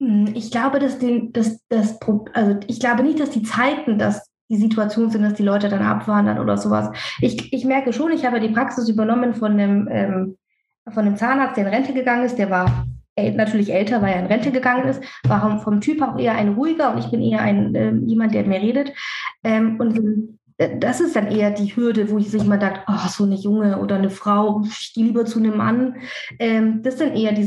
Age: 20-39